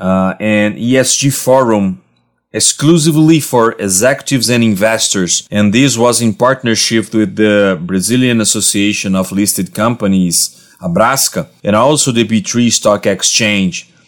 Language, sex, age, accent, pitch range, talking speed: English, male, 30-49, Brazilian, 100-125 Hz, 120 wpm